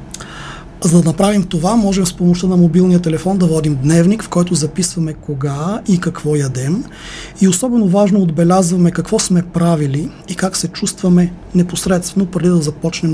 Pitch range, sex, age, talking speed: 165-195 Hz, male, 30-49, 160 wpm